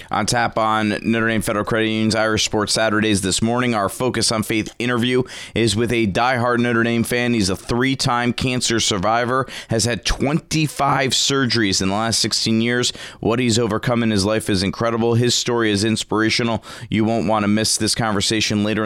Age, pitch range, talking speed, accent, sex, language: 30-49, 110-140 Hz, 190 wpm, American, male, English